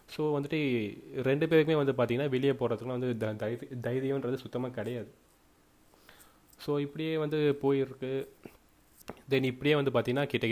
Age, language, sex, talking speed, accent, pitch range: 30-49, Tamil, male, 125 wpm, native, 115-135 Hz